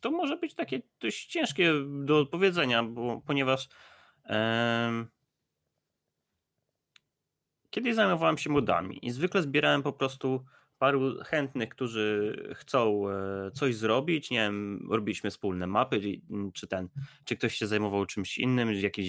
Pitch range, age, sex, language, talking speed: 105-150 Hz, 20-39, male, Polish, 125 wpm